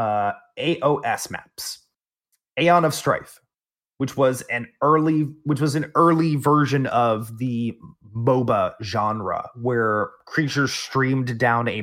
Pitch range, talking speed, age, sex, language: 105-145 Hz, 120 wpm, 30-49, male, English